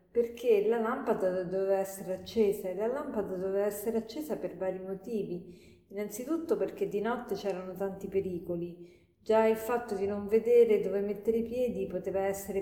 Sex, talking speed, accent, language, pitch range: female, 160 wpm, native, Italian, 185-215 Hz